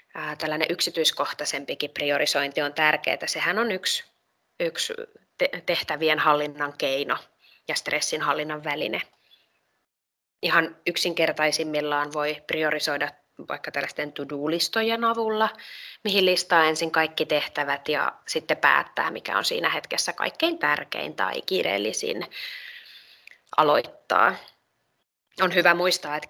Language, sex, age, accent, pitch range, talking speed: Finnish, female, 20-39, native, 155-190 Hz, 105 wpm